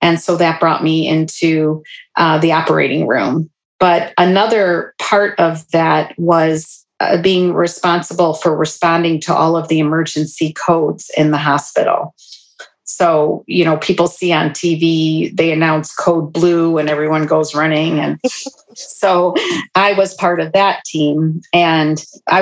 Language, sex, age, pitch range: English, female, 40-59, 155-180 Hz